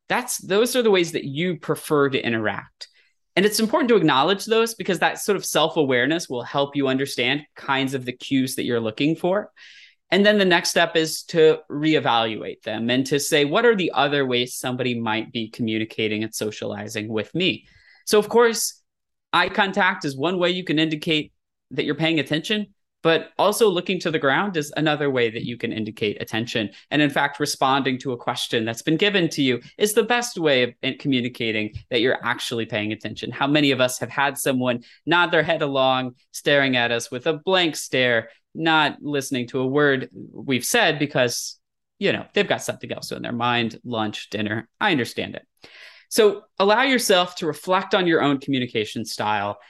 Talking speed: 190 wpm